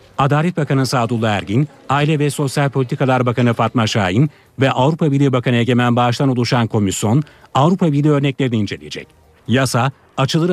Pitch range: 120-150 Hz